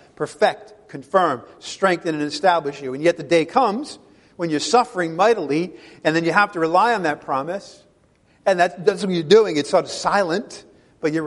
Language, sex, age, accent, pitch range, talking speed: English, male, 50-69, American, 155-200 Hz, 185 wpm